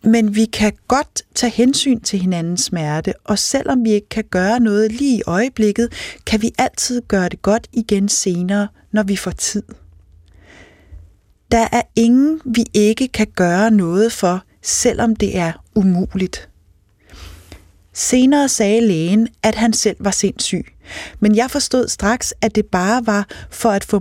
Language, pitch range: Danish, 165-230 Hz